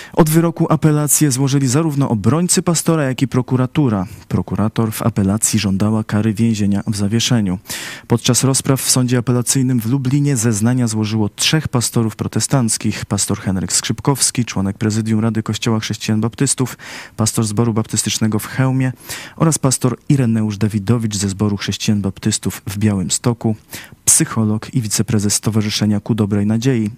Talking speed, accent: 140 wpm, native